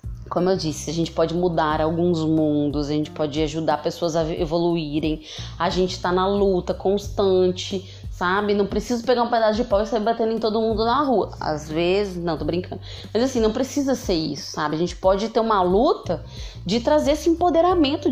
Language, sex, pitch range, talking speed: Portuguese, female, 170-250 Hz, 200 wpm